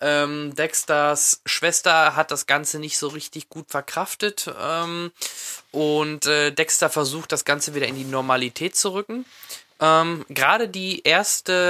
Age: 20-39